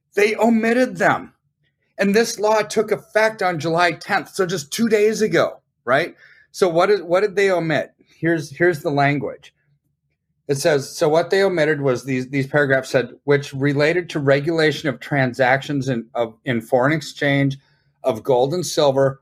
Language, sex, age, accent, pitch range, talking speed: English, male, 40-59, American, 135-180 Hz, 170 wpm